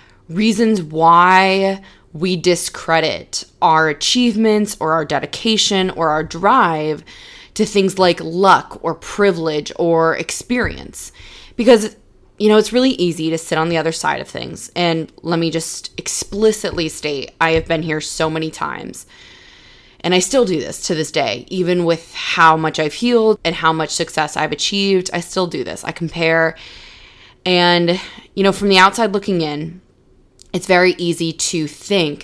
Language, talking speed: English, 160 wpm